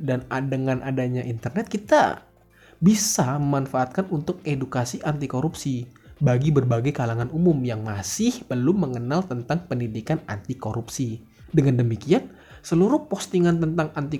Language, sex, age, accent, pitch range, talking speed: Indonesian, male, 20-39, native, 125-155 Hz, 125 wpm